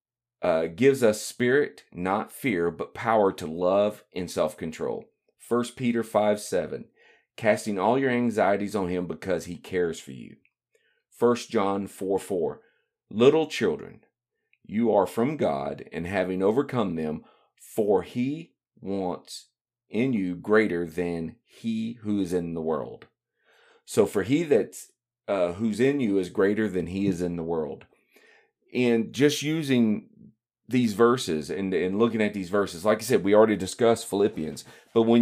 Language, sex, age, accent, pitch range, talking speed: English, male, 40-59, American, 100-120 Hz, 155 wpm